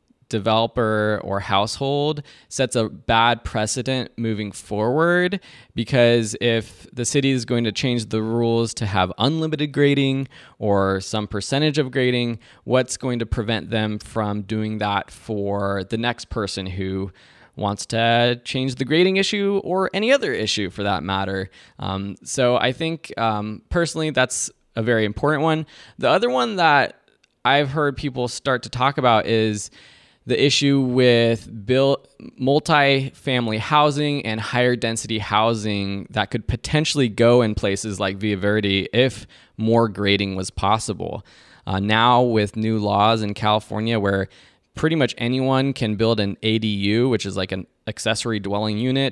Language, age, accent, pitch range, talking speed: English, 20-39, American, 105-130 Hz, 150 wpm